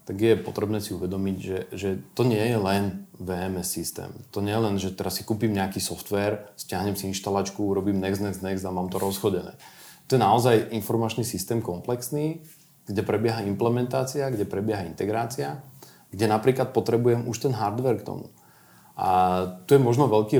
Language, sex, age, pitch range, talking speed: Slovak, male, 40-59, 95-120 Hz, 175 wpm